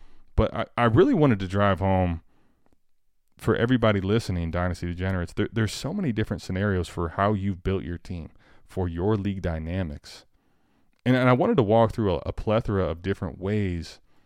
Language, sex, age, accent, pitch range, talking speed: English, male, 20-39, American, 95-130 Hz, 175 wpm